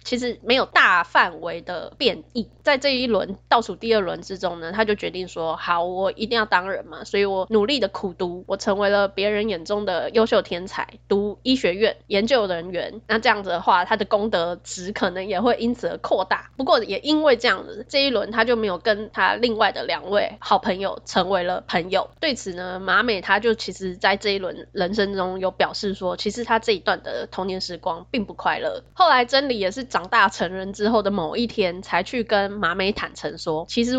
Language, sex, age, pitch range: Chinese, female, 20-39, 185-230 Hz